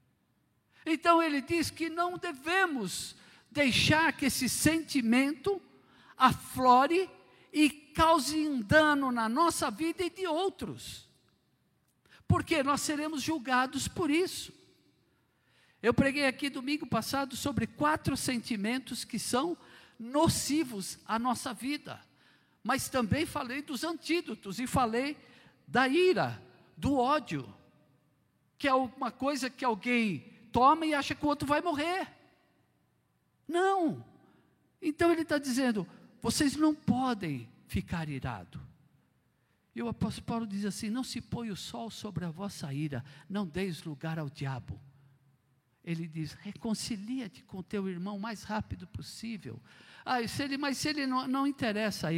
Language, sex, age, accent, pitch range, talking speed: Portuguese, male, 60-79, Brazilian, 200-295 Hz, 130 wpm